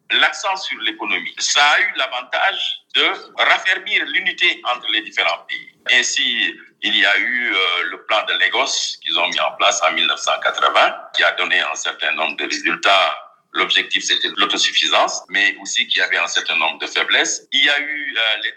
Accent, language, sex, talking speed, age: French, French, male, 185 wpm, 50-69